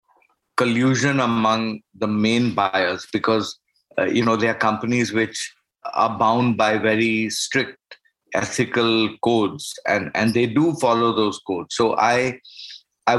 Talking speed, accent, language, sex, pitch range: 135 wpm, Indian, English, male, 110-125 Hz